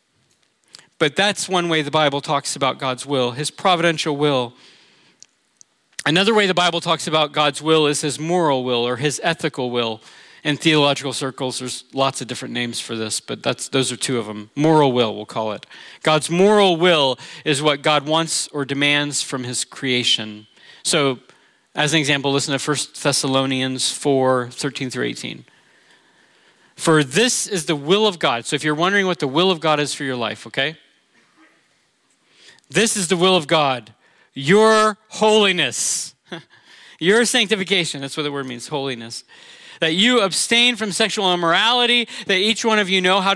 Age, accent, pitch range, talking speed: 40-59, American, 140-195 Hz, 175 wpm